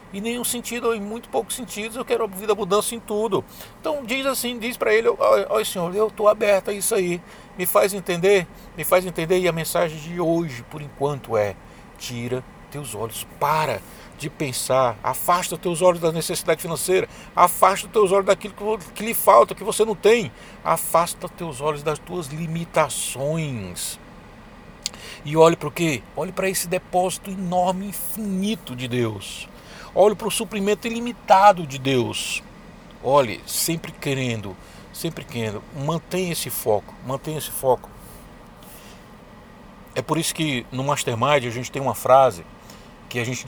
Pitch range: 135-200 Hz